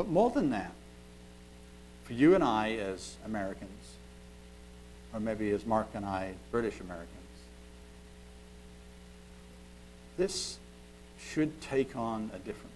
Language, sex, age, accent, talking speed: English, male, 60-79, American, 115 wpm